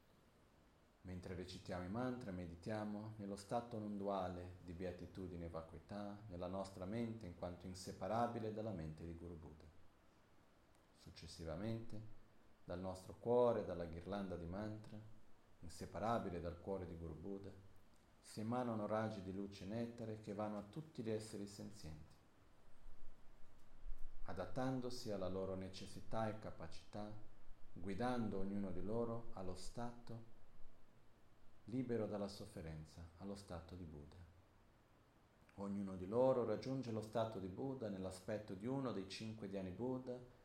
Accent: native